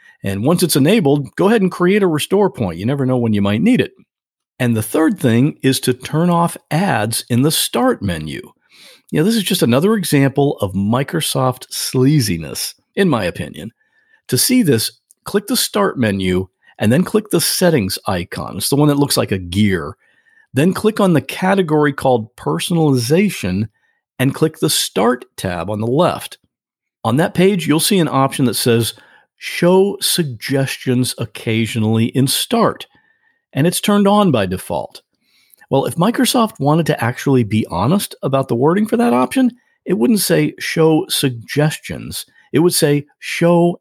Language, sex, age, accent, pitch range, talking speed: English, male, 50-69, American, 120-180 Hz, 170 wpm